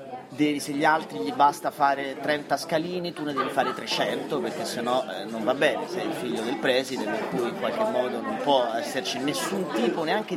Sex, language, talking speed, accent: male, Italian, 210 wpm, native